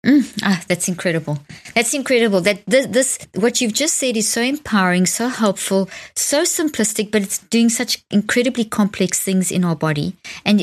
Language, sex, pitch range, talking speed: English, female, 185-235 Hz, 175 wpm